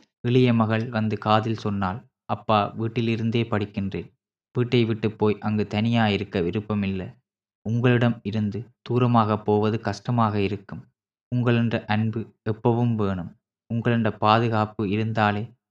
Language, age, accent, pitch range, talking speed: Tamil, 20-39, native, 105-120 Hz, 105 wpm